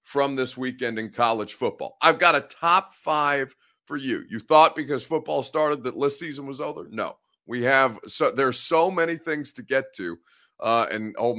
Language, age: English, 30-49